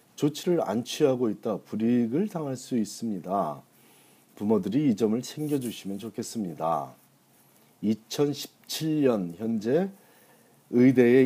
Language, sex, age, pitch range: Korean, male, 40-59, 95-135 Hz